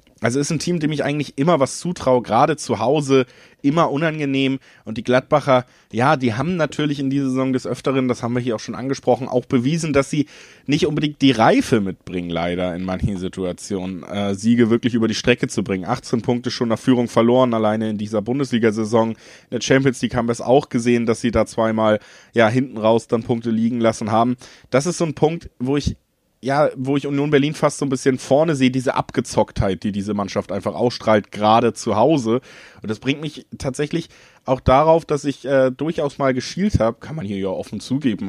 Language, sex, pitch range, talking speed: German, male, 115-135 Hz, 210 wpm